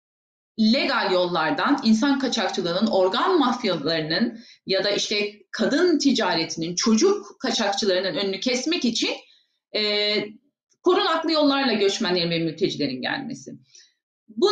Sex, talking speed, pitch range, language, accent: female, 100 wpm, 220-280 Hz, Turkish, native